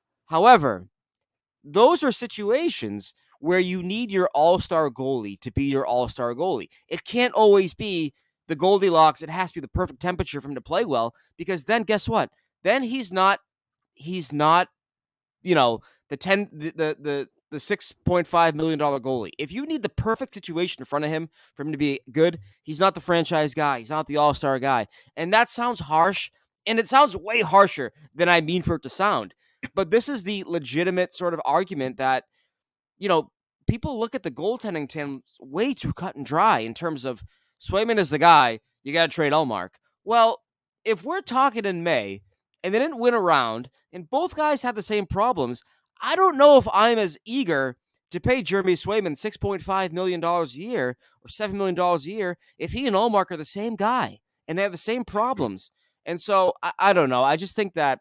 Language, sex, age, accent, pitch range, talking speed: English, male, 20-39, American, 150-210 Hz, 195 wpm